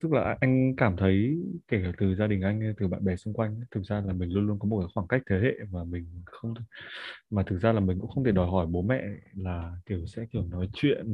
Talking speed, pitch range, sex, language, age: 270 wpm, 100-125 Hz, male, Vietnamese, 20-39